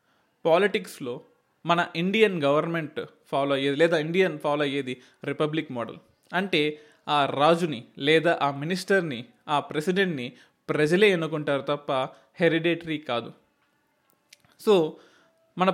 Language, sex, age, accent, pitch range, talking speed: Telugu, male, 20-39, native, 150-200 Hz, 105 wpm